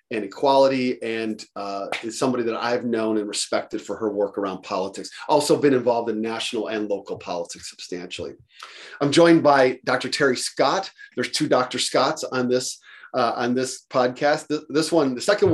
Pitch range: 120-145 Hz